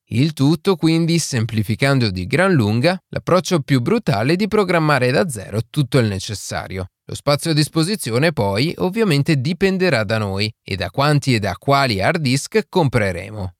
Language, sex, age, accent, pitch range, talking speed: Italian, male, 30-49, native, 110-160 Hz, 160 wpm